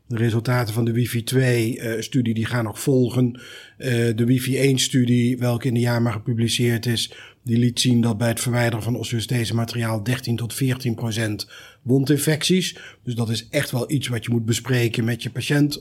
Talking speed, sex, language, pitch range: 175 wpm, male, Dutch, 120-135 Hz